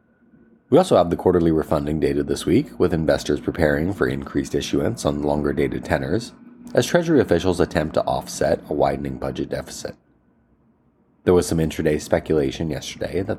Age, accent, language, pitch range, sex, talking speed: 30-49, American, English, 75-95 Hz, male, 155 wpm